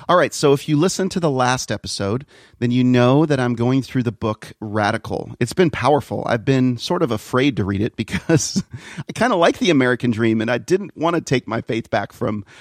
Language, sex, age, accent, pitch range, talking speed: English, male, 40-59, American, 110-130 Hz, 235 wpm